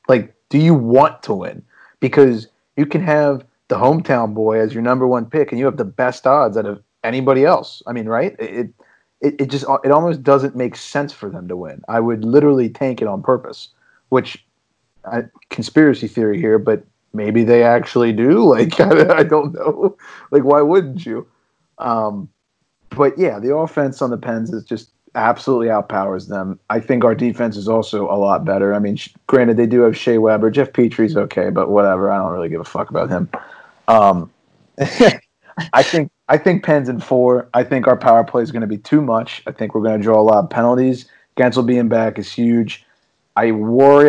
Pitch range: 110-135 Hz